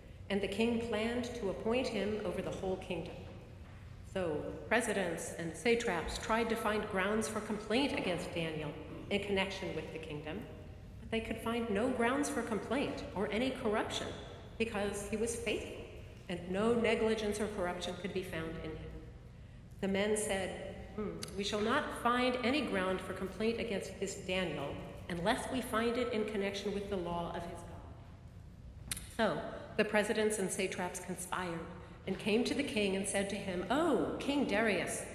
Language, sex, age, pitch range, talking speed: English, female, 50-69, 190-230 Hz, 165 wpm